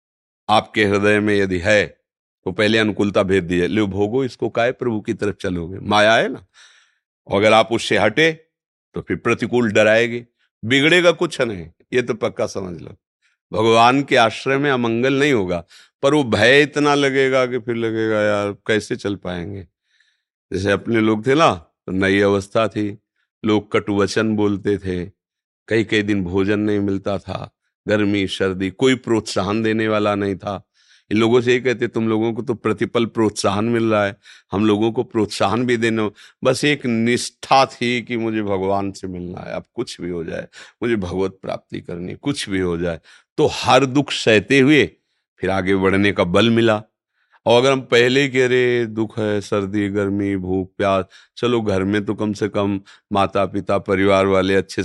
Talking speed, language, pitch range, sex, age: 180 wpm, Hindi, 95-120 Hz, male, 50-69